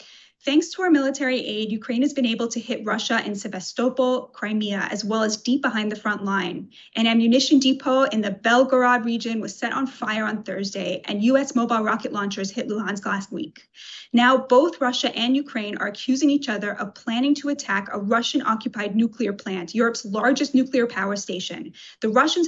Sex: female